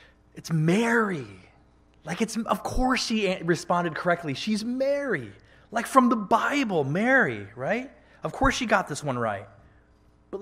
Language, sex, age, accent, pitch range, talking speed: English, male, 20-39, American, 115-190 Hz, 145 wpm